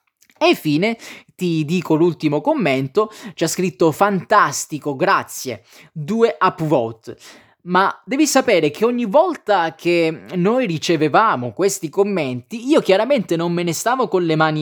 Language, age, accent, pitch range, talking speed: Italian, 20-39, native, 155-225 Hz, 135 wpm